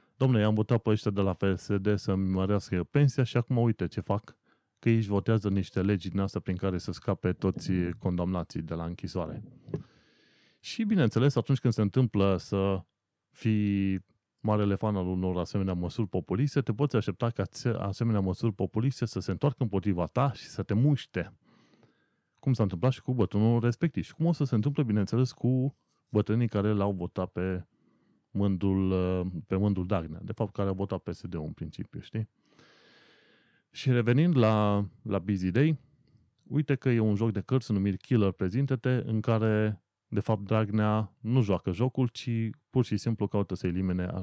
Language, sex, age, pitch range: Romanian, male, 20-39, 95-120 Hz